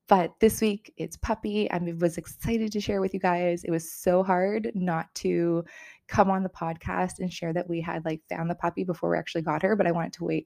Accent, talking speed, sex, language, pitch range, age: American, 240 wpm, female, English, 165-205 Hz, 20-39